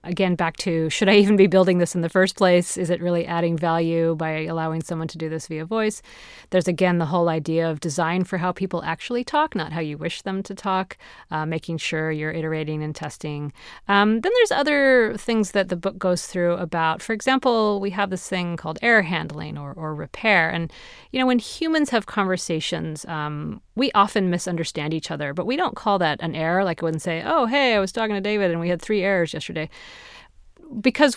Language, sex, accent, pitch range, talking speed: English, female, American, 165-220 Hz, 220 wpm